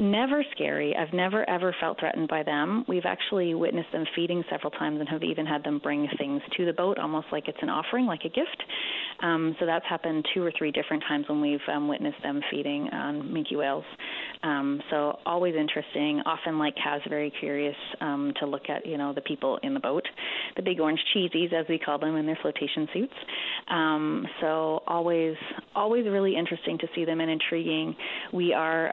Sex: female